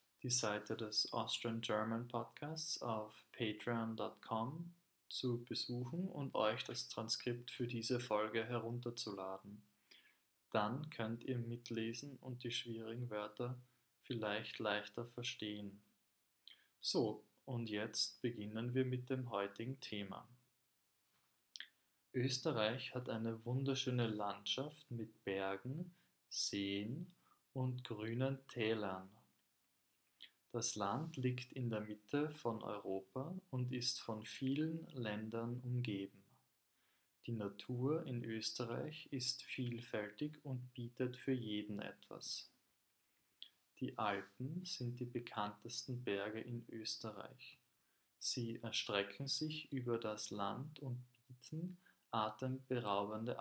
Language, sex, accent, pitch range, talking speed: German, male, German, 110-130 Hz, 100 wpm